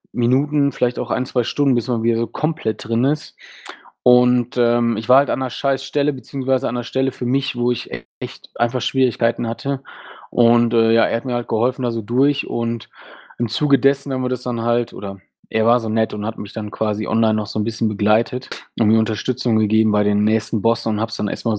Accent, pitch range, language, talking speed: German, 115-135 Hz, German, 230 wpm